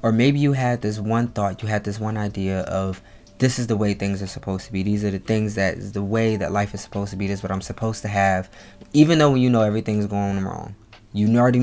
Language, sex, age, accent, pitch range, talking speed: English, male, 20-39, American, 100-115 Hz, 270 wpm